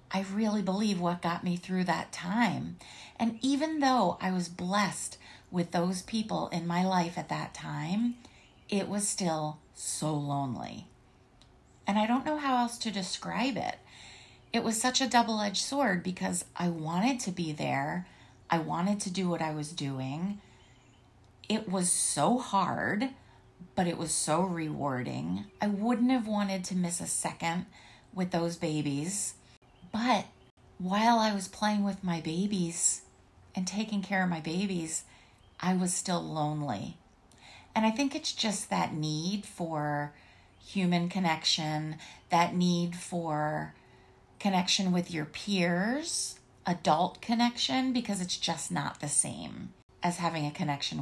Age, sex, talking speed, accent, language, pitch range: 30-49, female, 145 wpm, American, English, 155-205 Hz